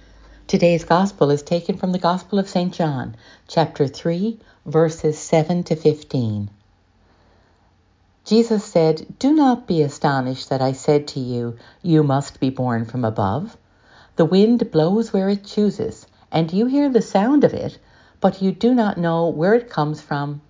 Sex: female